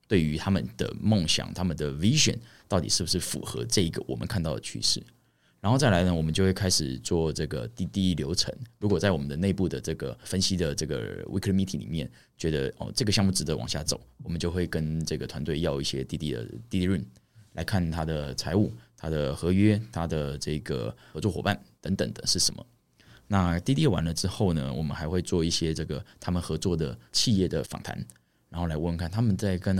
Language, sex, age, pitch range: Chinese, male, 20-39, 80-100 Hz